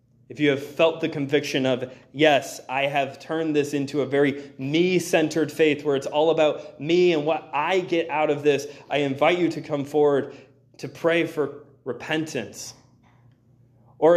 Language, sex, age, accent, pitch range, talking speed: English, male, 20-39, American, 135-185 Hz, 170 wpm